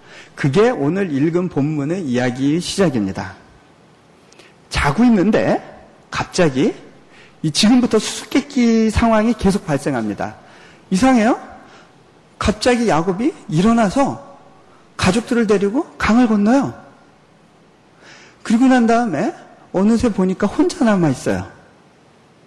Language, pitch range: Korean, 175-255 Hz